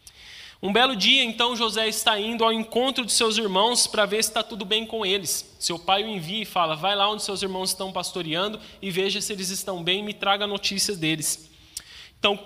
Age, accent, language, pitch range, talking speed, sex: 20-39, Brazilian, Portuguese, 175-220 Hz, 220 wpm, male